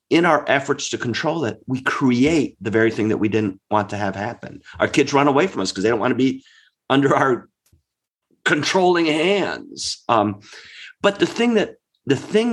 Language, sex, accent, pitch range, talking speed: English, male, American, 105-150 Hz, 195 wpm